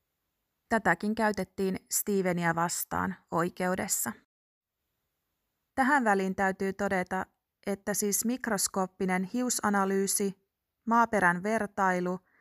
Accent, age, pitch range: native, 30-49, 175-205 Hz